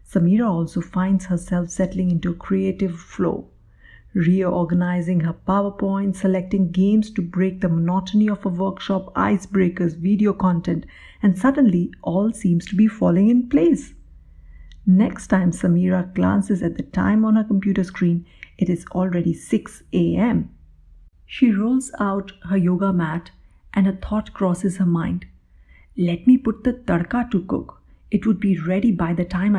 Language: Hindi